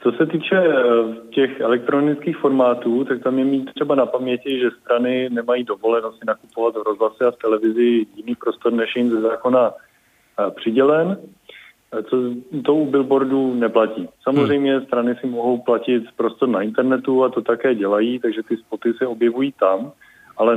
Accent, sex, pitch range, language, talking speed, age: native, male, 110-130 Hz, Czech, 160 wpm, 20-39